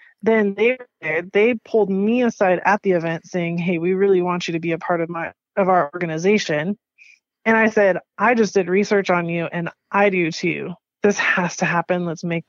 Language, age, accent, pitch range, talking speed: English, 20-39, American, 180-210 Hz, 205 wpm